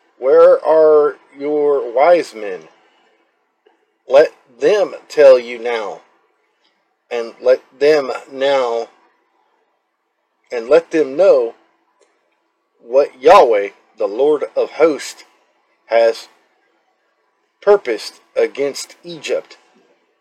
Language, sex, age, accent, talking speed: English, male, 40-59, American, 85 wpm